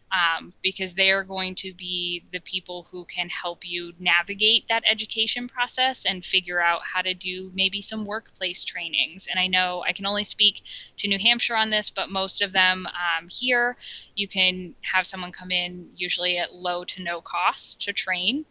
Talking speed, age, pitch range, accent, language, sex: 190 wpm, 10-29, 180-210 Hz, American, English, female